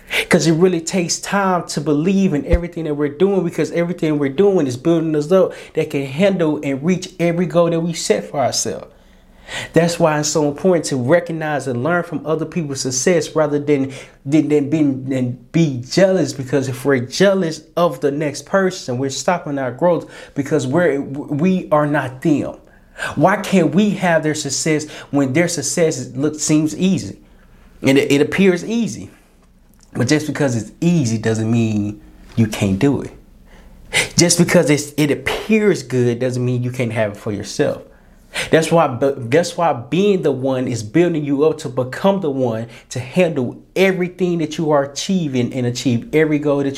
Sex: male